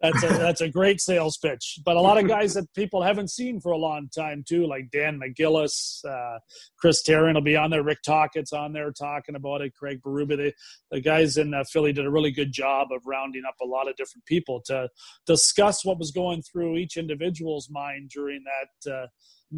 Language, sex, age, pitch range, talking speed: English, male, 40-59, 140-165 Hz, 215 wpm